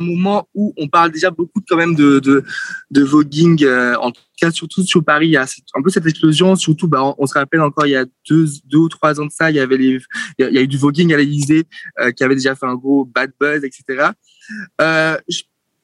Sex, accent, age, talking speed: male, French, 20-39, 265 wpm